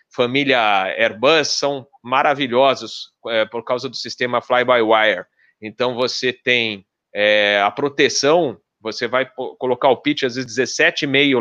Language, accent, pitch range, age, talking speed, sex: Portuguese, Brazilian, 115-140 Hz, 30-49, 120 wpm, male